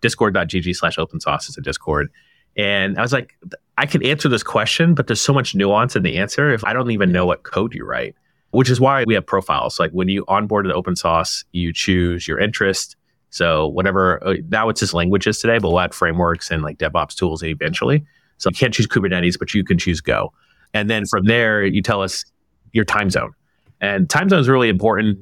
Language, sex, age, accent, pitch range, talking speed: English, male, 30-49, American, 90-120 Hz, 220 wpm